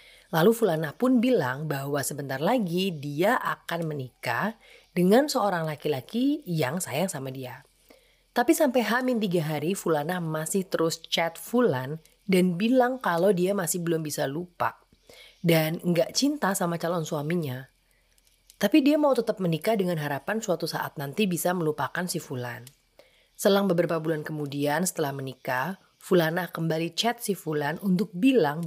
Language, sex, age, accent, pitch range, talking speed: Indonesian, female, 30-49, native, 150-195 Hz, 140 wpm